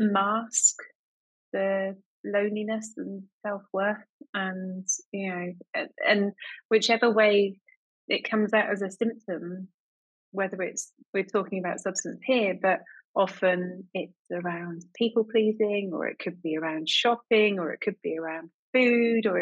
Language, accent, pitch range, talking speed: English, British, 180-220 Hz, 135 wpm